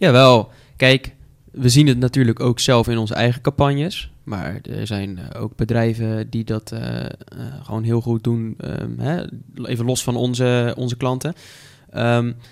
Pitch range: 115-130 Hz